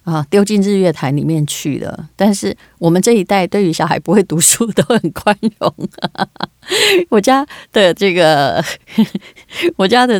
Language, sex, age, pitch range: Chinese, female, 30-49, 165-225 Hz